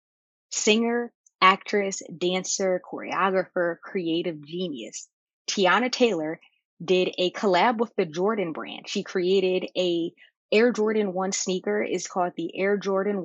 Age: 20-39